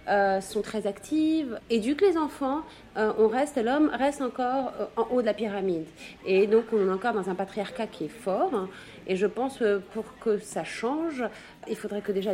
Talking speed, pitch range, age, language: 210 wpm, 195-245 Hz, 30-49, Arabic